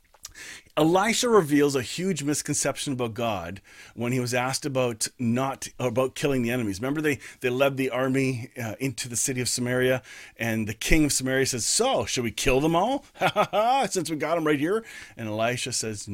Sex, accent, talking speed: male, American, 185 wpm